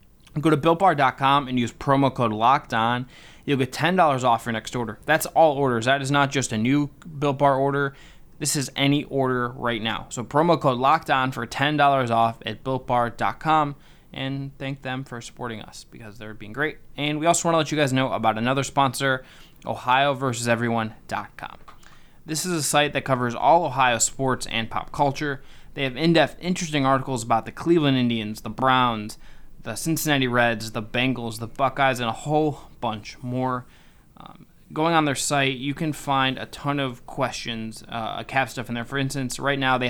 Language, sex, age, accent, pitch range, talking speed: English, male, 20-39, American, 115-145 Hz, 180 wpm